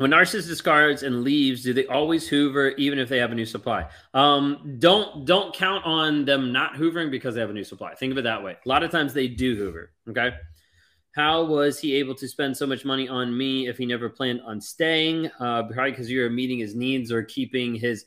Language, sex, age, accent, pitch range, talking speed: English, male, 30-49, American, 120-160 Hz, 235 wpm